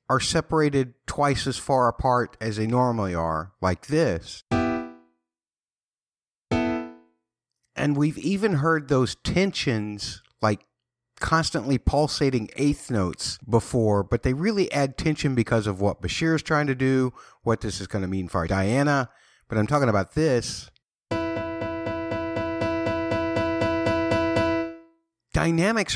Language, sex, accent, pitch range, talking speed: English, male, American, 110-160 Hz, 120 wpm